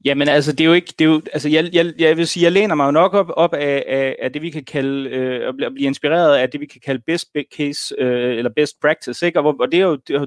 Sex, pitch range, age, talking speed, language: male, 130-165 Hz, 30-49, 255 wpm, Danish